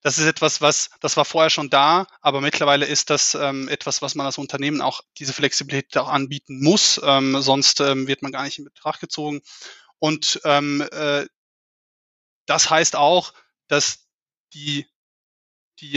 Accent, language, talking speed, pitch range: German, German, 165 wpm, 140-150 Hz